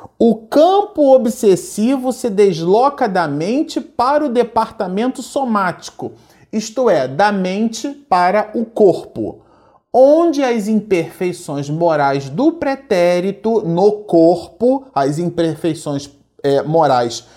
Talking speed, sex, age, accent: 100 wpm, male, 40-59, Brazilian